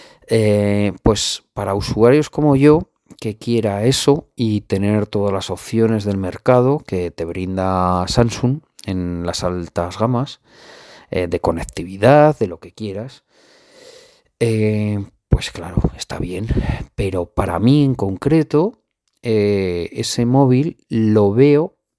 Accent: Spanish